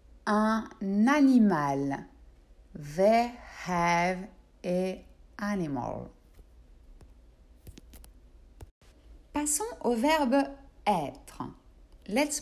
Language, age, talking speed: French, 60-79, 55 wpm